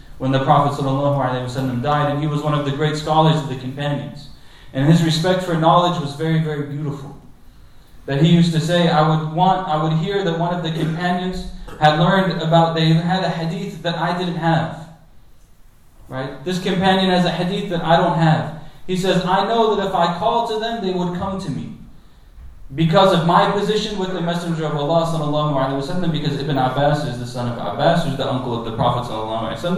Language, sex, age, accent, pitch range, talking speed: English, male, 30-49, American, 145-180 Hz, 215 wpm